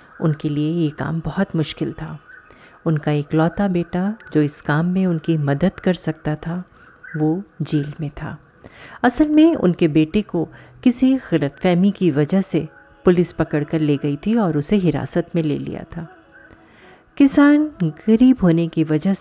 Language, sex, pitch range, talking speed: Hindi, female, 155-195 Hz, 160 wpm